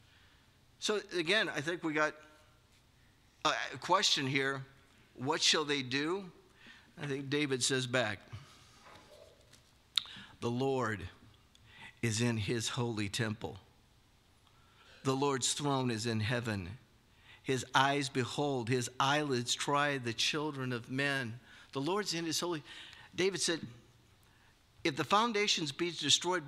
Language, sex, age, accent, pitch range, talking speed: English, male, 50-69, American, 120-200 Hz, 120 wpm